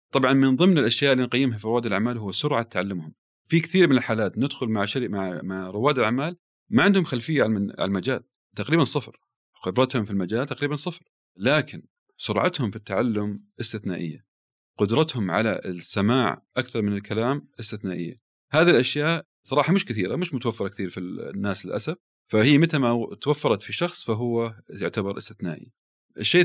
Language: Arabic